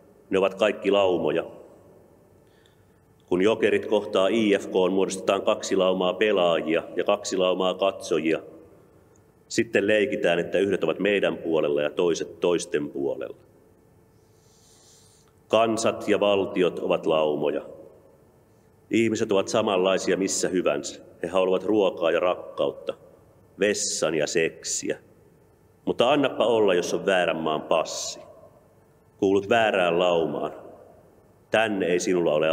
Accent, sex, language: native, male, Finnish